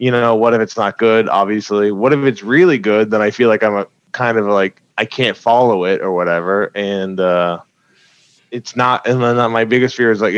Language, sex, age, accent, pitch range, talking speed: English, male, 20-39, American, 105-120 Hz, 225 wpm